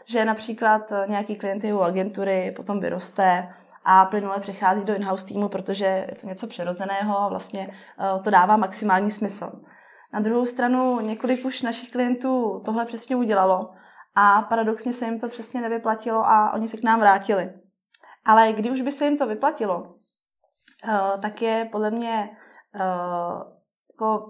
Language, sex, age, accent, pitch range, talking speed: Czech, female, 20-39, native, 190-225 Hz, 150 wpm